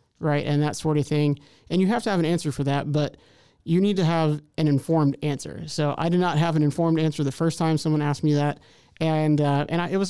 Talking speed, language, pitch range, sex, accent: 260 wpm, English, 145-170 Hz, male, American